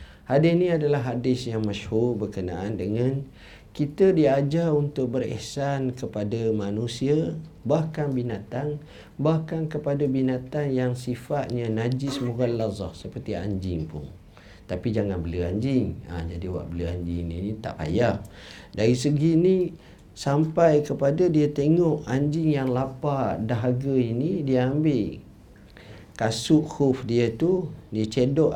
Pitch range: 105-140 Hz